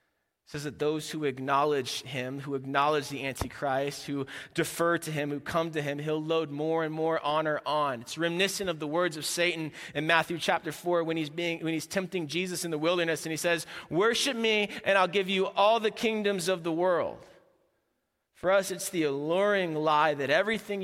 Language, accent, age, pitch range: English, American, 30-49, 130-175 Hz